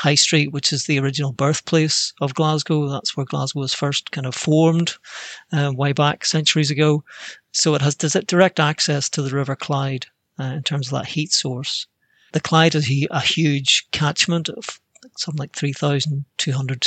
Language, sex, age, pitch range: English, male, 40-59, 140-155 Hz